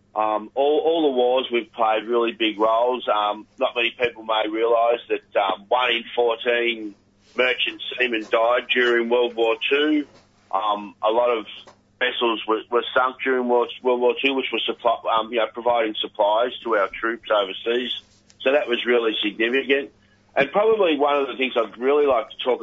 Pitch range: 110-130 Hz